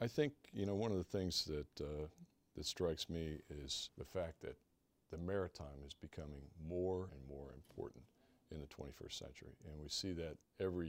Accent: American